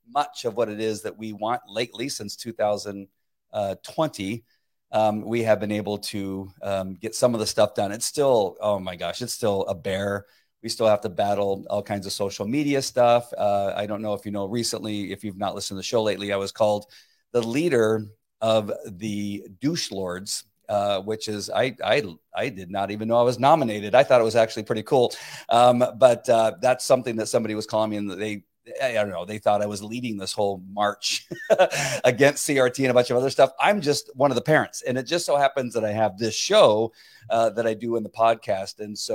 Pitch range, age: 100-115 Hz, 40-59